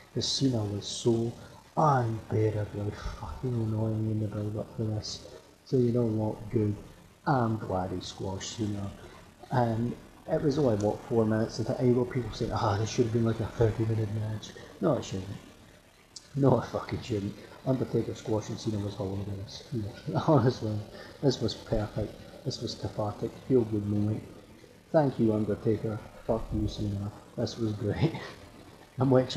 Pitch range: 105-125 Hz